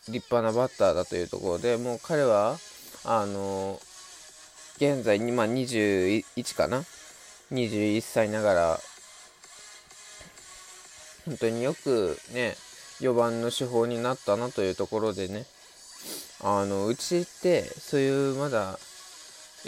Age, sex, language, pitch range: 20-39, male, Japanese, 100-125 Hz